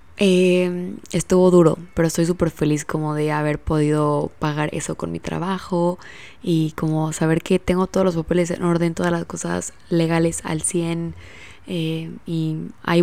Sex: female